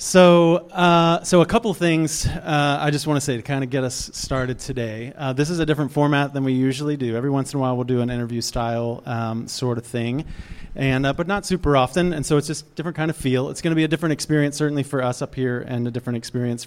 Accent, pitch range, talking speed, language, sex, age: American, 125-155 Hz, 265 wpm, English, male, 30-49